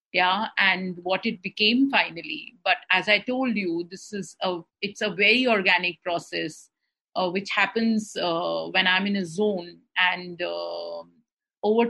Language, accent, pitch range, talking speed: English, Indian, 180-225 Hz, 150 wpm